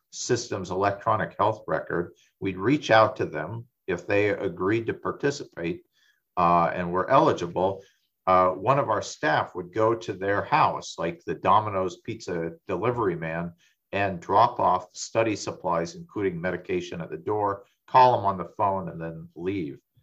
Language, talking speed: English, 155 wpm